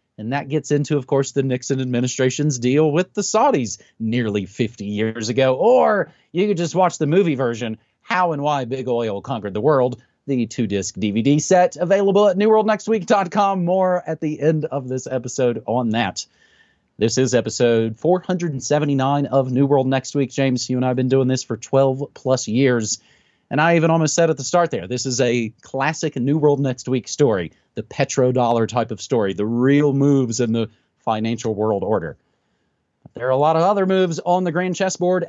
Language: English